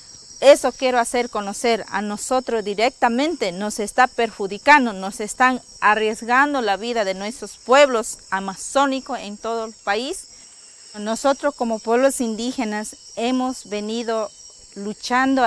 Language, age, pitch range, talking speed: Arabic, 40-59, 200-245 Hz, 115 wpm